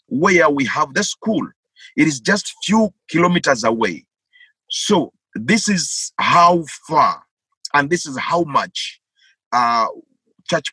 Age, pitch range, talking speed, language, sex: 50-69, 150-225 Hz, 135 wpm, English, male